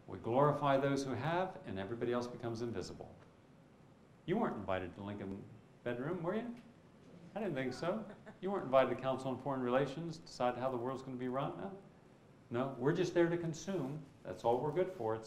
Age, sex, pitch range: 50-69, male, 125-180 Hz